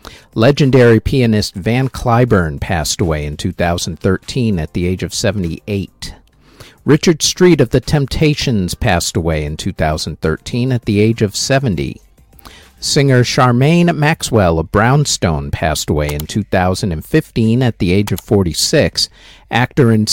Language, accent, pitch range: English, American, 90-135 Hz